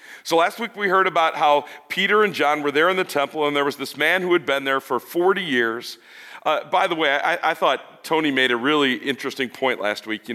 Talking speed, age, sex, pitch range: 250 wpm, 40-59, male, 130-185 Hz